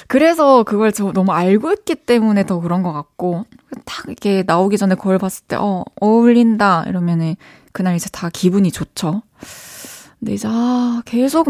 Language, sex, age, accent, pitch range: Korean, female, 20-39, native, 190-255 Hz